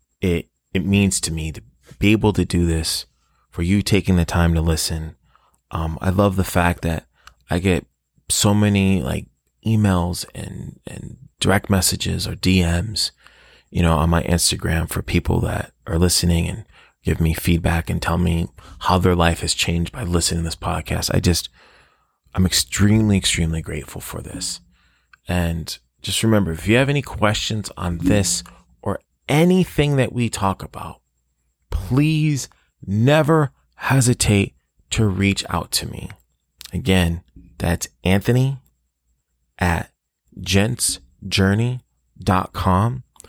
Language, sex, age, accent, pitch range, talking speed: English, male, 30-49, American, 85-110 Hz, 135 wpm